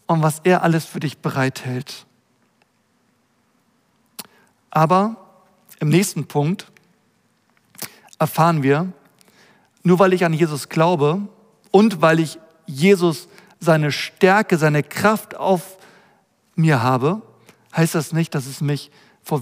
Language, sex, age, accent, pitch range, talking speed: German, male, 50-69, German, 150-195 Hz, 110 wpm